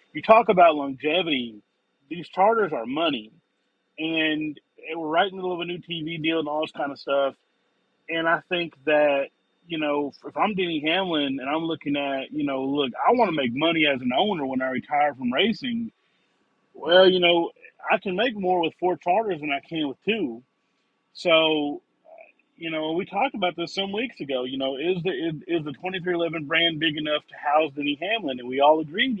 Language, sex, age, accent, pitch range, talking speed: English, male, 30-49, American, 155-210 Hz, 210 wpm